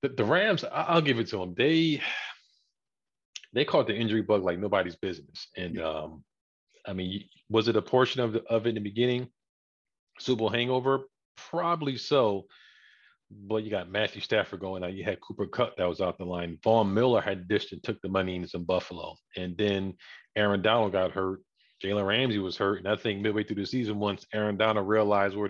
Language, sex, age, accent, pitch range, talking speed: English, male, 40-59, American, 105-150 Hz, 200 wpm